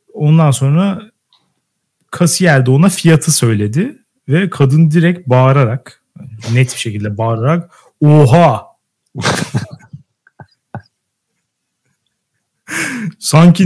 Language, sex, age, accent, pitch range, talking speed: Turkish, male, 40-59, native, 120-155 Hz, 75 wpm